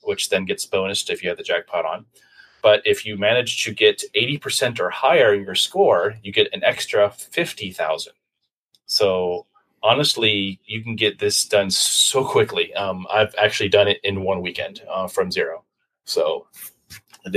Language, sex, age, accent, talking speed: English, male, 30-49, American, 170 wpm